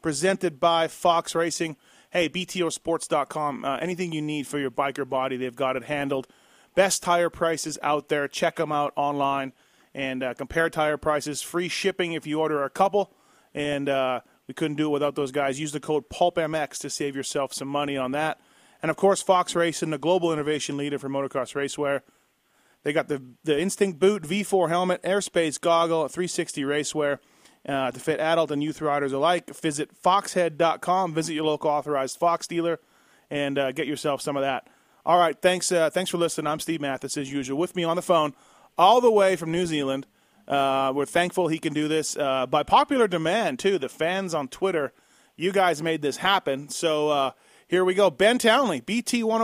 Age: 30-49